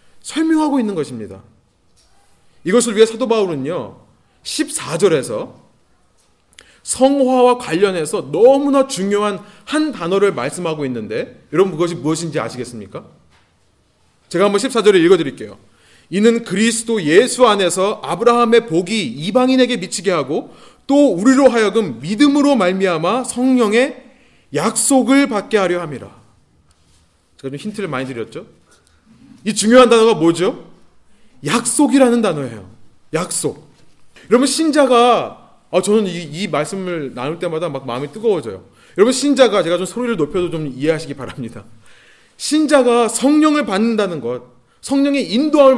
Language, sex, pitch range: Korean, male, 160-260 Hz